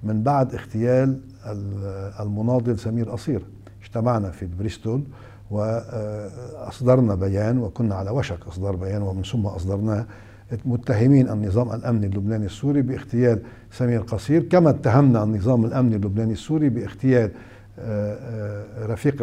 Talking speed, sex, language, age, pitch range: 110 wpm, male, Arabic, 60-79, 100-120 Hz